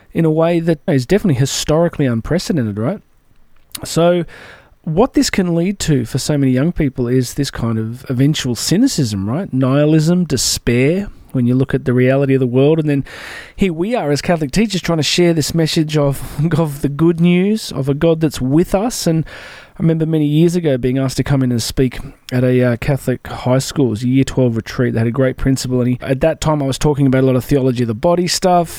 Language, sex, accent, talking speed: English, male, Australian, 225 wpm